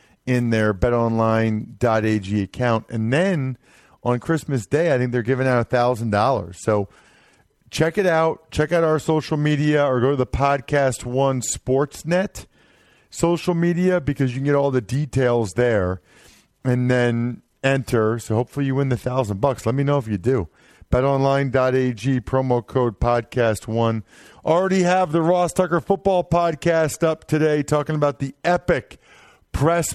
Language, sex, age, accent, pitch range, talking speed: English, male, 40-59, American, 115-155 Hz, 150 wpm